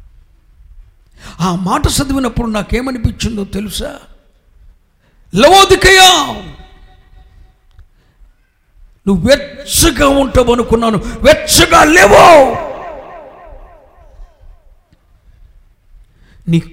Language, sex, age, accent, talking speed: Telugu, male, 50-69, native, 45 wpm